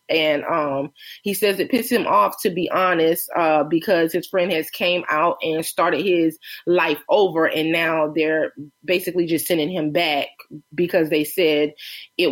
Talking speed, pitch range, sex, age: 170 wpm, 160-200 Hz, female, 20-39